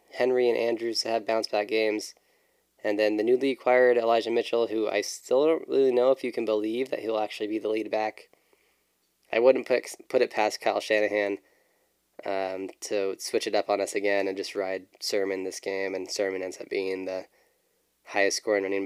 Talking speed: 200 wpm